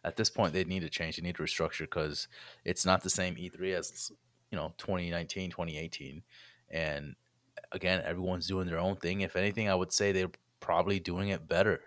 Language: English